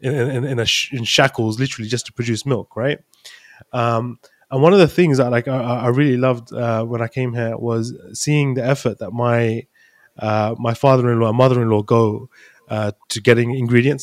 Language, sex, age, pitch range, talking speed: English, male, 20-39, 115-135 Hz, 195 wpm